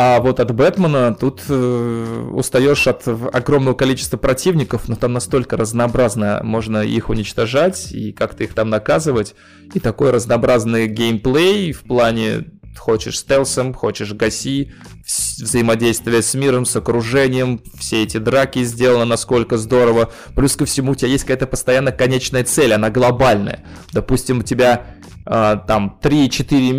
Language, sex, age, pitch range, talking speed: Russian, male, 20-39, 115-130 Hz, 140 wpm